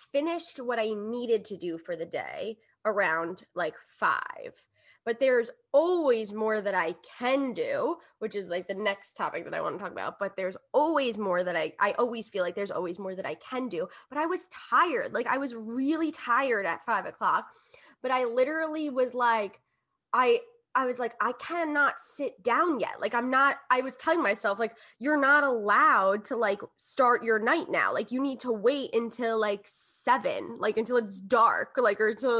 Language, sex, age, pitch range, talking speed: English, female, 10-29, 210-290 Hz, 200 wpm